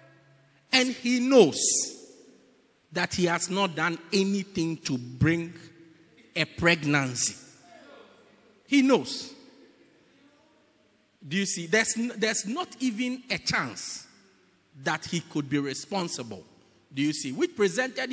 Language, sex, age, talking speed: English, male, 50-69, 115 wpm